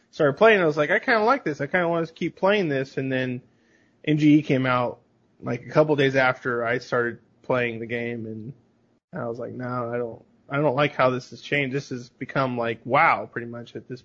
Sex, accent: male, American